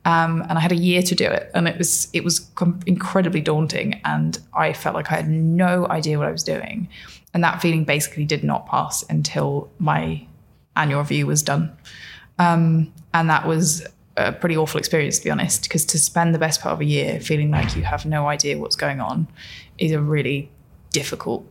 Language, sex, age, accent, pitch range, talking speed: English, female, 20-39, British, 150-175 Hz, 210 wpm